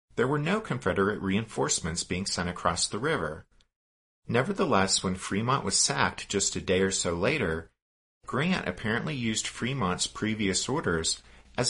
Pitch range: 90-115 Hz